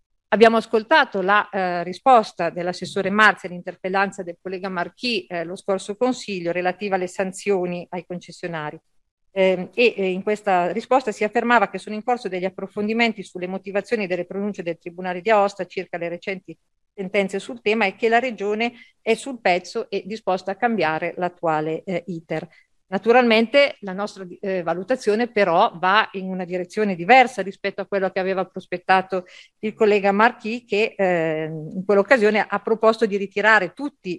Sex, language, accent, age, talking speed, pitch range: female, Italian, native, 50-69, 160 wpm, 180-215 Hz